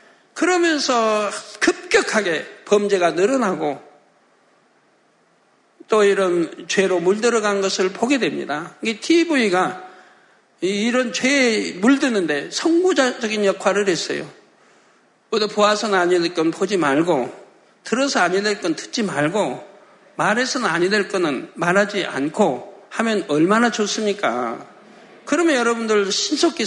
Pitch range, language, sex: 185-235 Hz, Korean, male